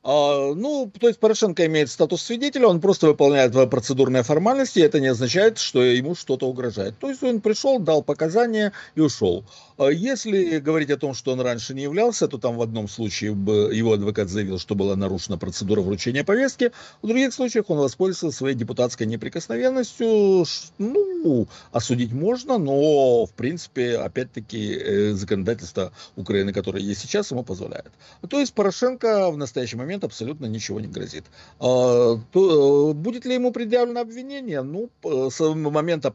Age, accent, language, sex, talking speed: 50-69, native, Russian, male, 150 wpm